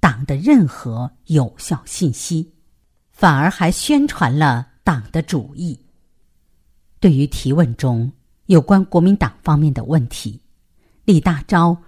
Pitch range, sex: 125-185 Hz, female